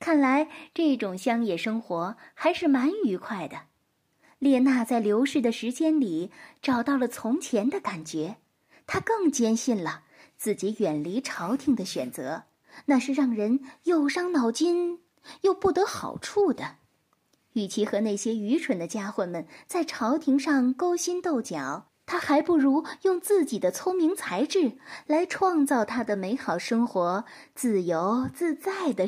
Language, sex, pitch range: Chinese, female, 215-305 Hz